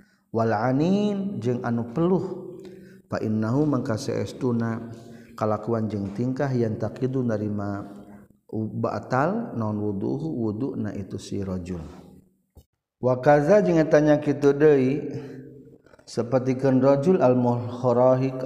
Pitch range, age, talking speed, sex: 110-135 Hz, 50-69, 100 wpm, male